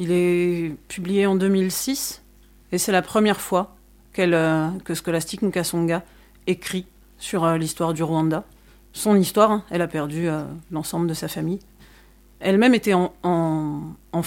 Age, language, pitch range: 40-59, French, 165-200 Hz